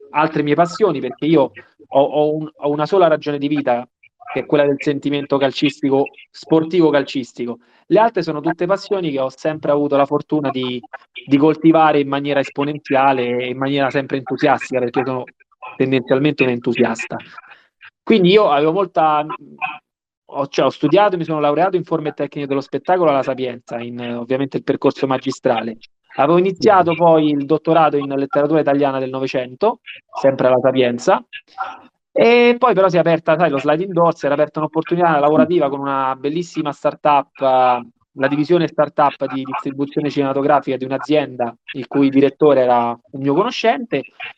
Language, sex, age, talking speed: Italian, male, 20-39, 160 wpm